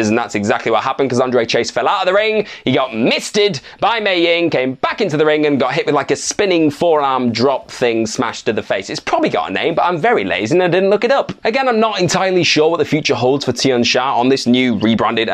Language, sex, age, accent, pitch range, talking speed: English, male, 20-39, British, 140-210 Hz, 270 wpm